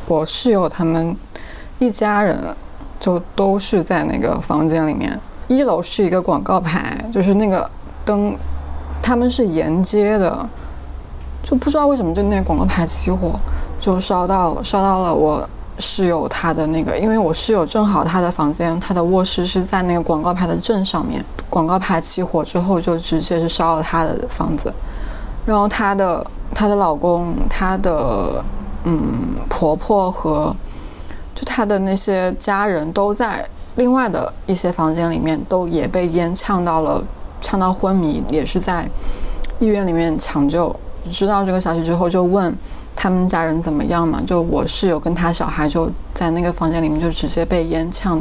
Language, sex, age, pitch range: Chinese, female, 20-39, 160-195 Hz